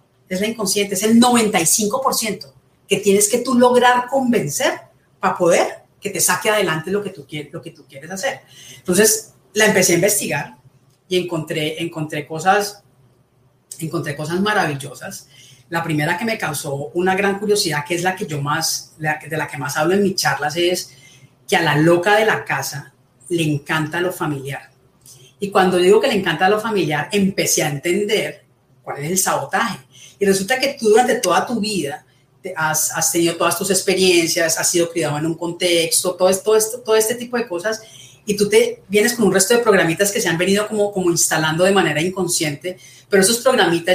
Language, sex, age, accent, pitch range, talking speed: Spanish, female, 40-59, Colombian, 150-200 Hz, 185 wpm